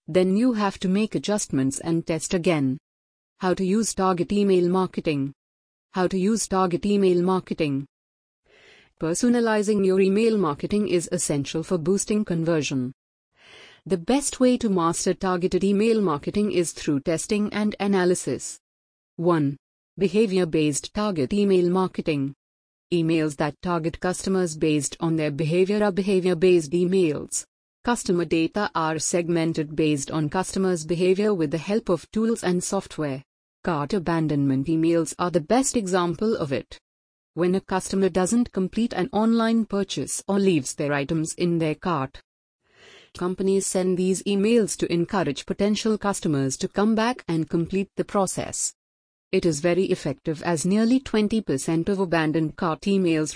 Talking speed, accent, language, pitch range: 140 wpm, Indian, English, 160-195 Hz